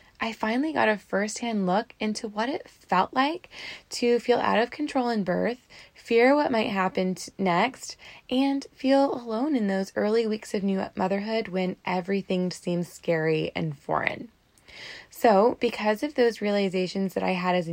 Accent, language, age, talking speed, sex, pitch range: American, English, 10-29, 165 wpm, female, 185-240 Hz